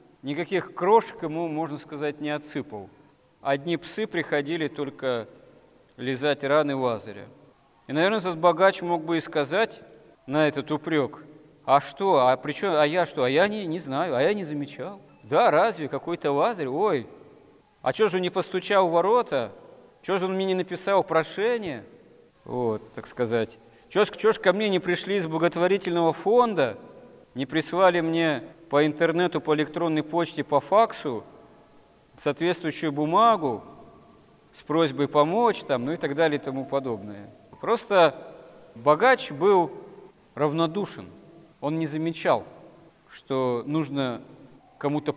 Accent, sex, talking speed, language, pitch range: native, male, 140 wpm, Russian, 145-180 Hz